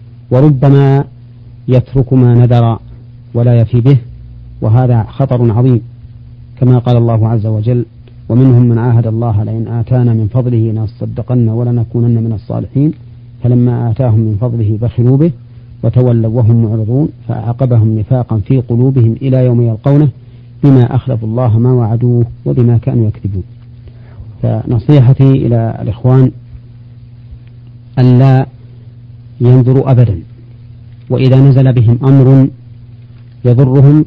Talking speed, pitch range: 110 wpm, 115-125 Hz